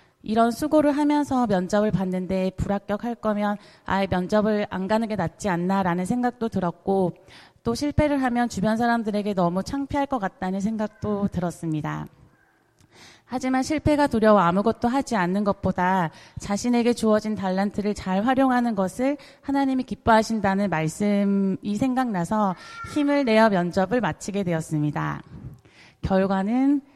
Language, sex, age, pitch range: Korean, female, 30-49, 185-245 Hz